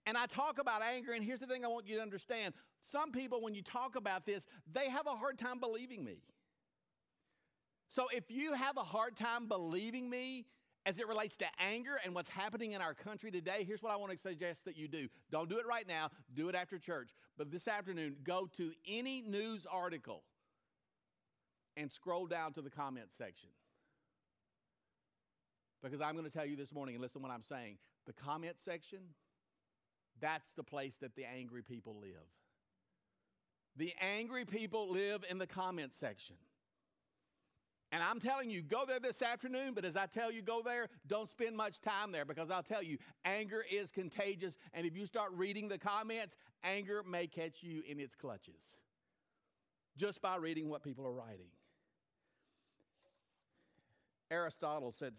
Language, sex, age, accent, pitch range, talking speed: English, male, 50-69, American, 150-220 Hz, 180 wpm